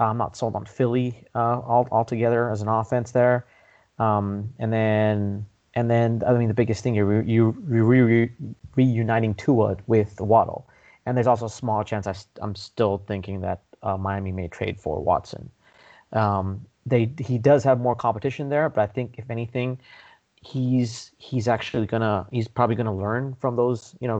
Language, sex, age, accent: English, male, 30-49, American